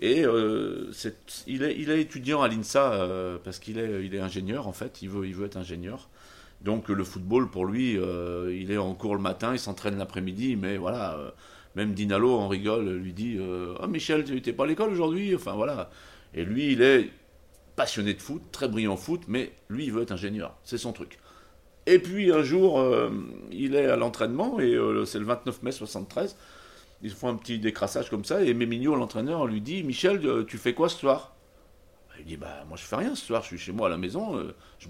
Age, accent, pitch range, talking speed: 40-59, French, 95-140 Hz, 235 wpm